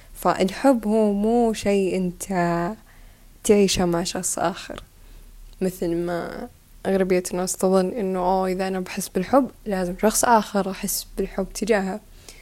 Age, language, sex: 10-29, Arabic, female